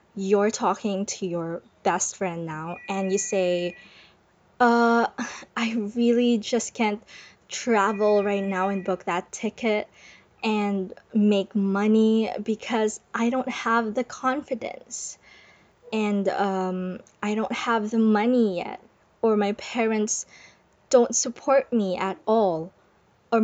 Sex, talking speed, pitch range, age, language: female, 125 wpm, 200-240 Hz, 20-39, English